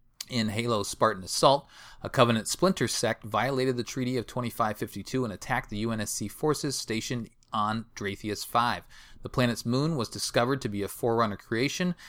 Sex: male